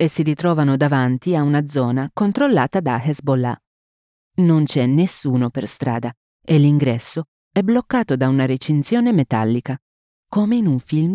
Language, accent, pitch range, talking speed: Italian, native, 130-175 Hz, 145 wpm